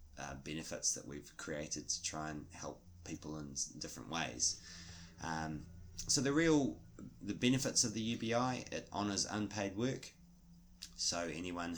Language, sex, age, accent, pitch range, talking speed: English, male, 20-39, Australian, 75-100 Hz, 145 wpm